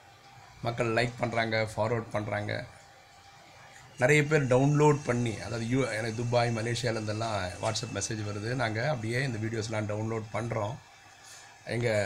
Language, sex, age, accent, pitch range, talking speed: Tamil, male, 30-49, native, 110-135 Hz, 120 wpm